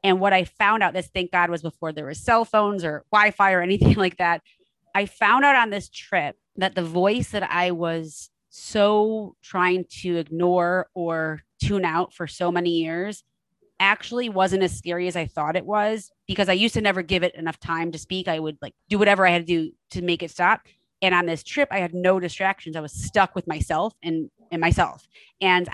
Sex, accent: female, American